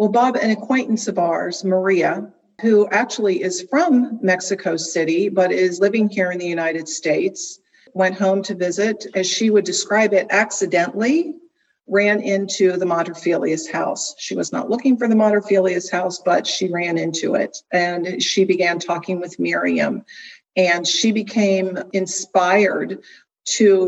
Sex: female